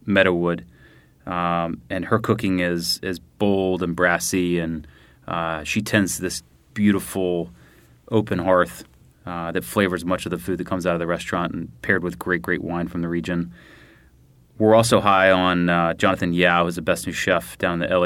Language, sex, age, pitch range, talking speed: English, male, 30-49, 85-100 Hz, 195 wpm